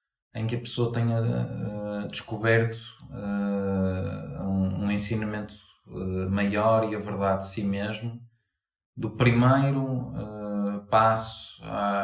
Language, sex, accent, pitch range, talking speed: Portuguese, male, Portuguese, 95-115 Hz, 95 wpm